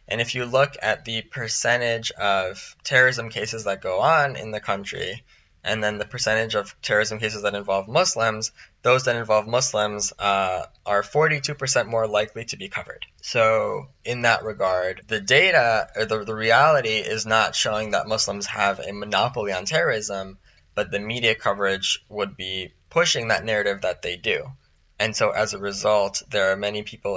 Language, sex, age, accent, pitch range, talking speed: English, male, 10-29, American, 100-125 Hz, 175 wpm